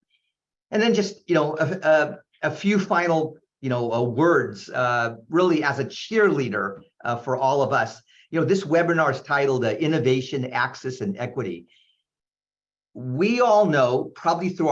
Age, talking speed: 50-69, 165 wpm